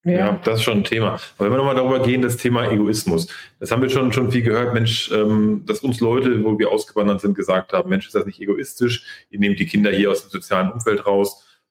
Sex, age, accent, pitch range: male, 30-49, German, 105-125 Hz